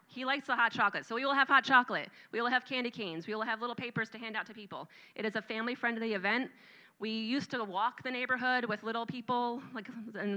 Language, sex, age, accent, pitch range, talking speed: English, female, 30-49, American, 190-235 Hz, 250 wpm